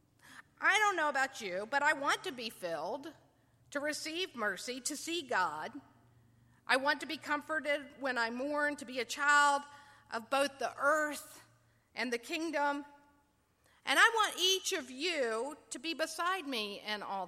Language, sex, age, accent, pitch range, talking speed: English, female, 50-69, American, 235-330 Hz, 165 wpm